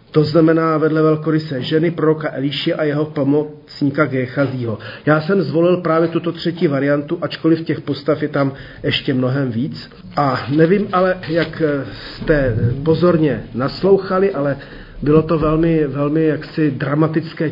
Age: 40-59